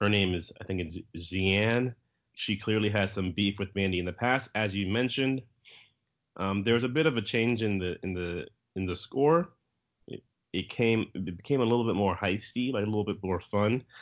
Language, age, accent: English, 30-49, American